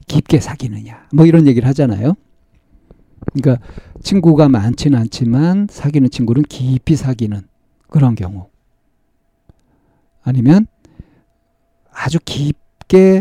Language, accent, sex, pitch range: Korean, native, male, 120-155 Hz